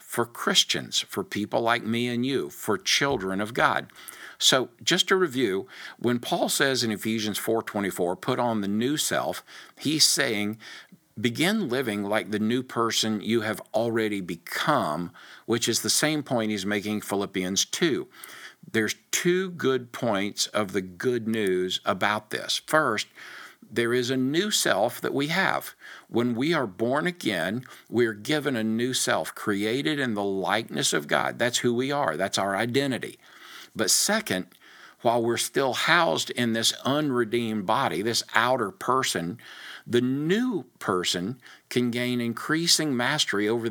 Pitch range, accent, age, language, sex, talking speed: 105-130 Hz, American, 50-69, English, male, 155 wpm